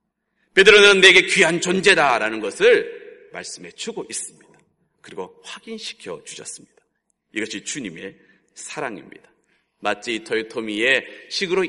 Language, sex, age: Korean, male, 40-59